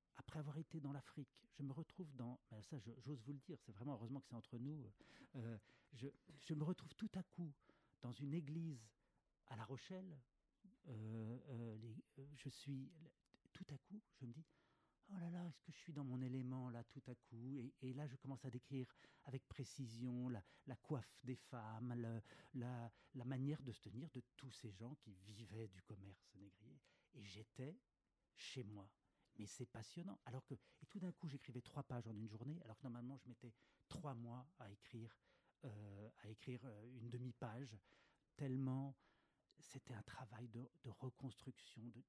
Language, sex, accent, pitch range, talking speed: French, male, French, 115-145 Hz, 190 wpm